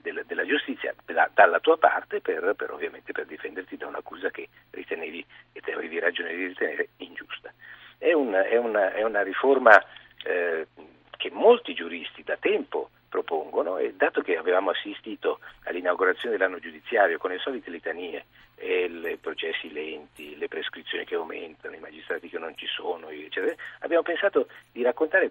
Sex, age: male, 50-69